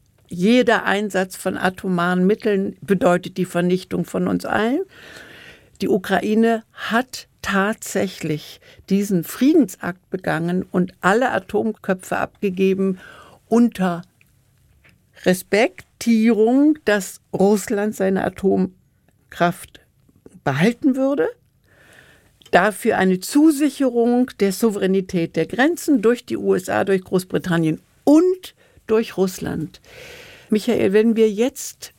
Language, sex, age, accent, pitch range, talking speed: German, female, 60-79, German, 180-225 Hz, 90 wpm